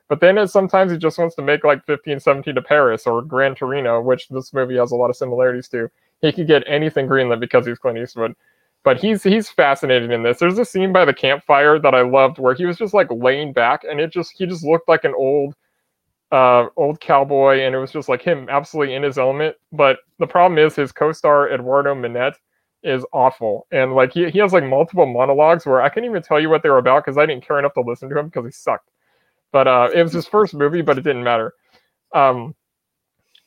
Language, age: English, 30-49